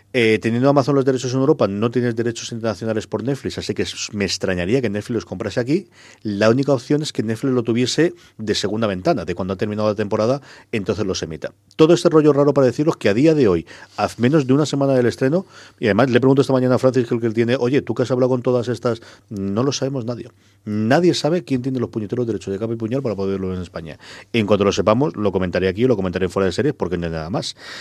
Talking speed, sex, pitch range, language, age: 255 wpm, male, 105-135 Hz, Spanish, 40-59